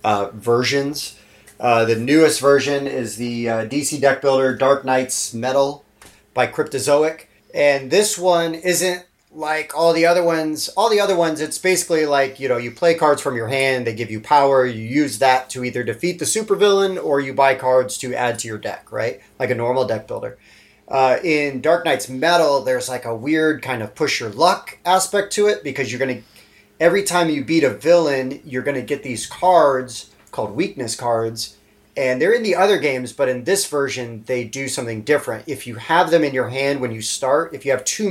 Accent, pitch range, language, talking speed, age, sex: American, 120-155 Hz, English, 210 wpm, 30-49, male